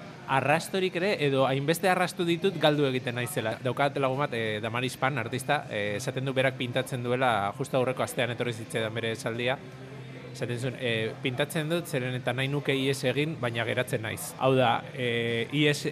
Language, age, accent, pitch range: Spanish, 20-39, Spanish, 125-150 Hz